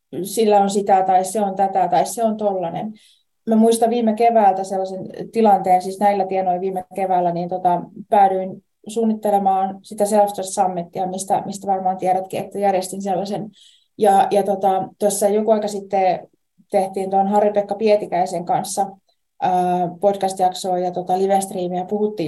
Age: 20-39